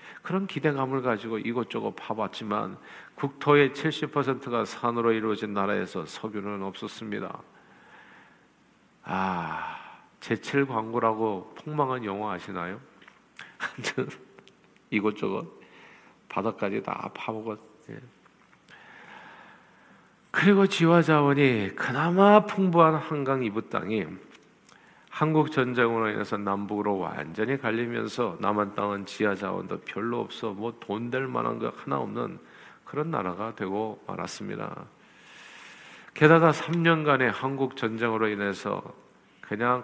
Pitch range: 105-140 Hz